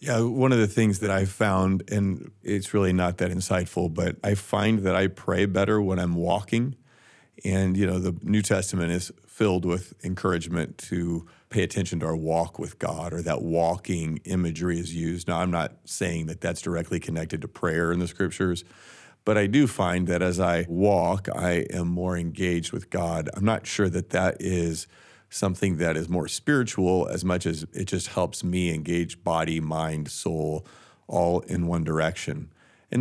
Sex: male